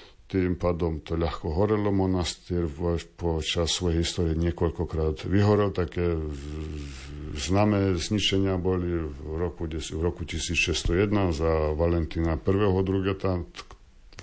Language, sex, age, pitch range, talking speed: Slovak, male, 50-69, 80-95 Hz, 100 wpm